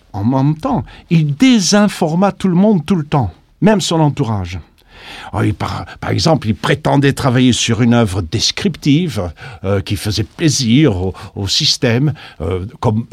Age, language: 50-69, French